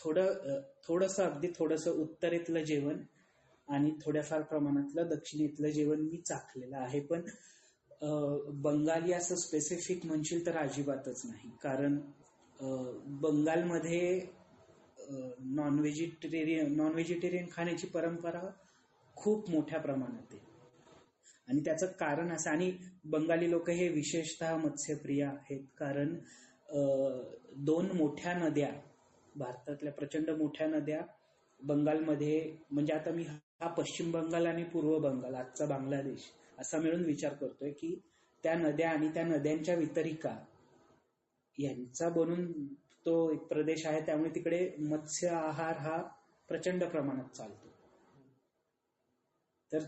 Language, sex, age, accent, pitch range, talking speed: Marathi, male, 30-49, native, 150-170 Hz, 110 wpm